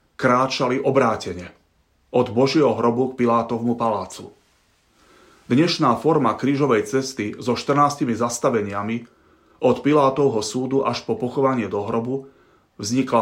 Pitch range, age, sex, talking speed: 115-135 Hz, 30-49, male, 110 wpm